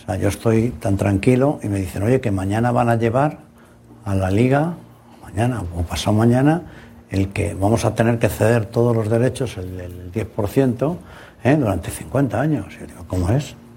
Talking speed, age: 190 wpm, 60-79